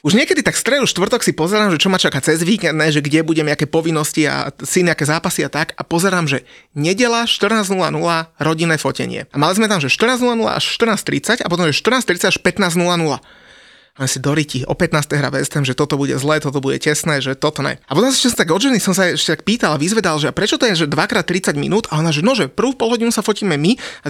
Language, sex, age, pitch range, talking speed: Slovak, male, 30-49, 150-195 Hz, 235 wpm